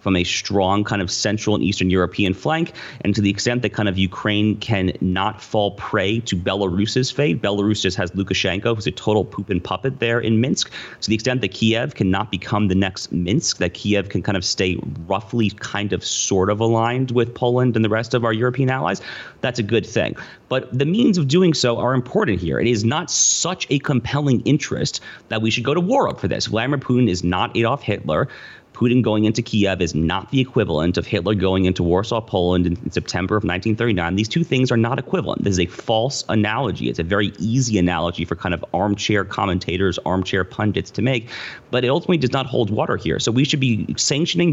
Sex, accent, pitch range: male, American, 95-125 Hz